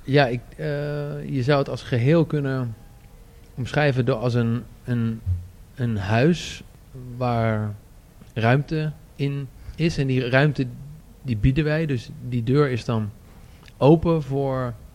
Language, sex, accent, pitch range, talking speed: Dutch, male, Dutch, 115-140 Hz, 120 wpm